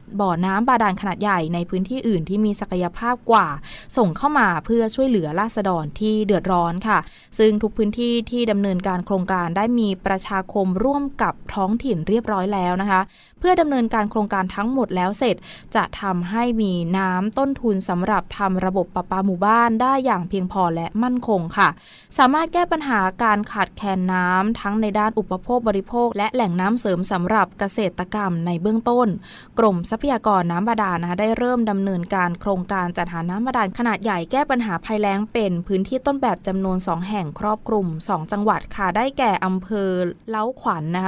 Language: Thai